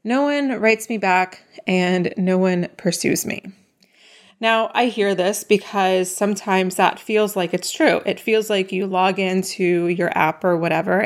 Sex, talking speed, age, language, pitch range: female, 170 wpm, 30-49, English, 180-215 Hz